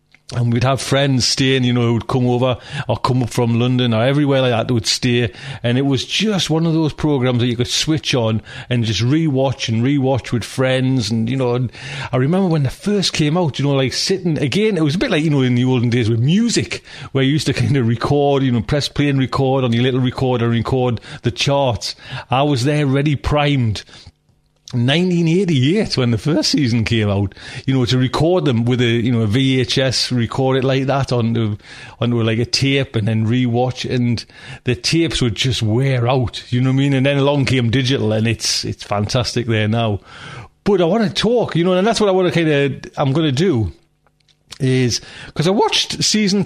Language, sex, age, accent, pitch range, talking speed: English, male, 40-59, British, 120-145 Hz, 225 wpm